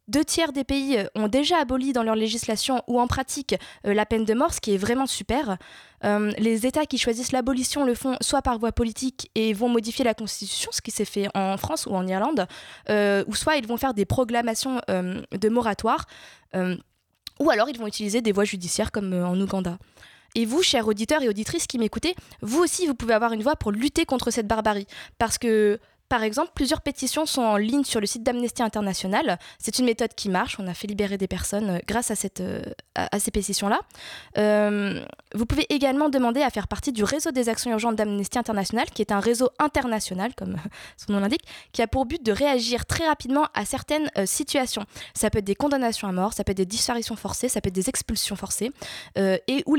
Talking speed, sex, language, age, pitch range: 220 wpm, female, French, 20-39, 205-265 Hz